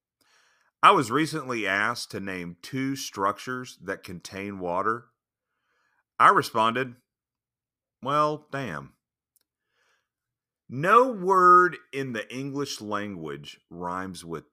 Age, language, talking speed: 40-59, English, 95 wpm